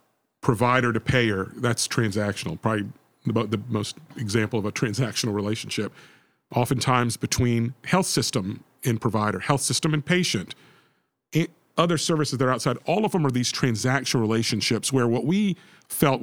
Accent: American